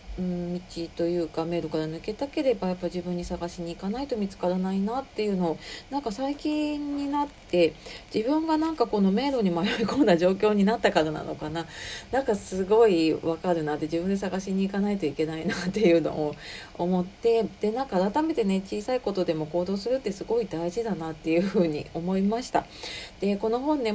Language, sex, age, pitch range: Japanese, female, 40-59, 170-225 Hz